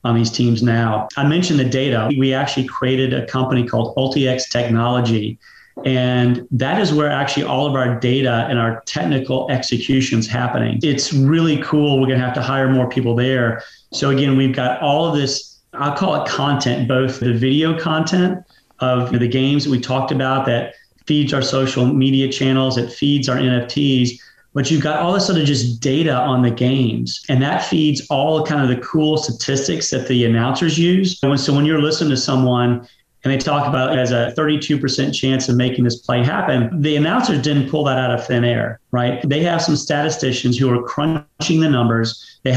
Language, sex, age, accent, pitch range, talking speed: English, male, 30-49, American, 125-145 Hz, 195 wpm